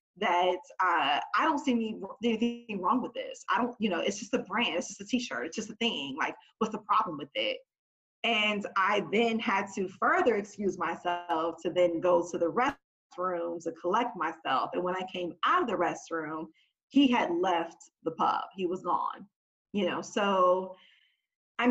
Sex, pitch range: female, 175-235 Hz